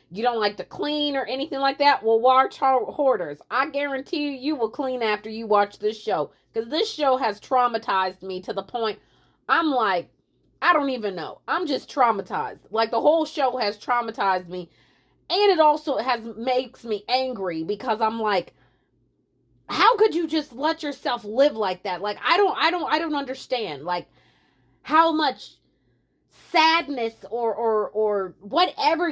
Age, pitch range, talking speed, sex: 30-49, 210-305 Hz, 175 wpm, female